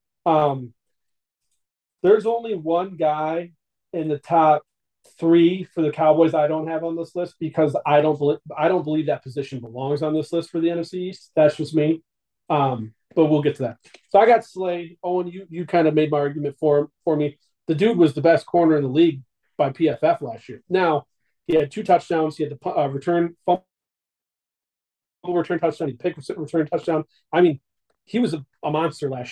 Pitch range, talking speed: 145-170 Hz, 195 wpm